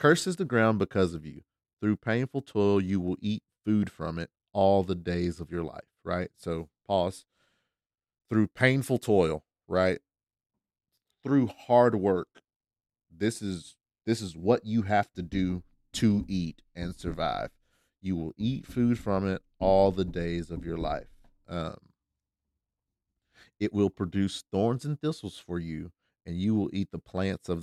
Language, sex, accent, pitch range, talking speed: English, male, American, 85-105 Hz, 155 wpm